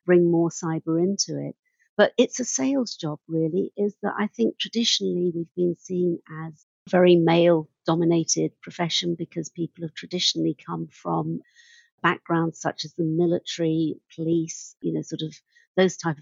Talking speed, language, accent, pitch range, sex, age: 155 wpm, English, British, 160-210 Hz, female, 50-69